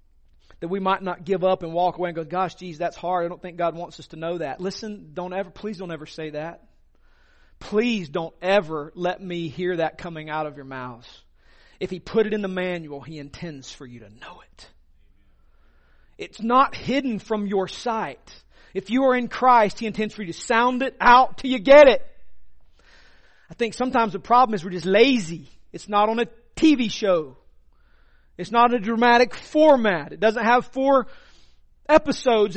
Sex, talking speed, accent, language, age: male, 195 wpm, American, English, 40-59